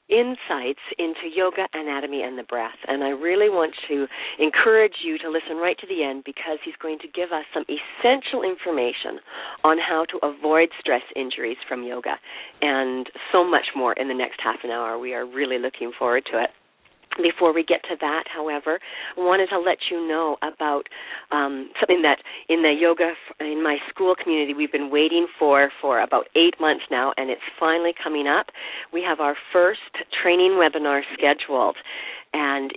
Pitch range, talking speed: 150-185 Hz, 180 wpm